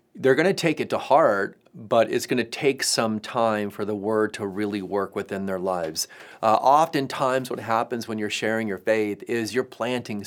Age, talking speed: 30-49, 205 wpm